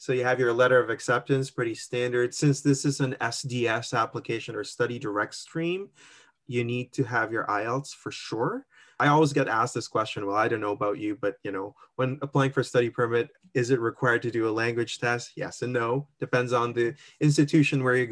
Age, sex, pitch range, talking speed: 20-39, male, 120-140 Hz, 215 wpm